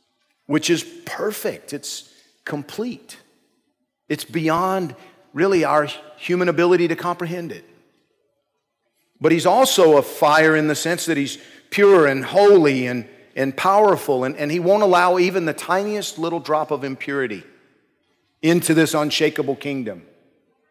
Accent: American